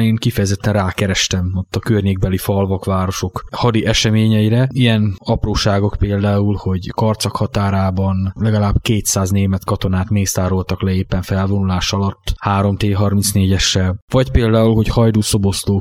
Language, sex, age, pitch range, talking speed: Hungarian, male, 20-39, 95-110 Hz, 115 wpm